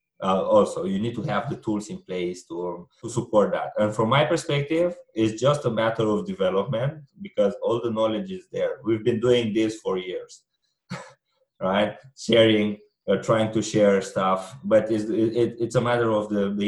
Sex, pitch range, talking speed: male, 105-130 Hz, 185 wpm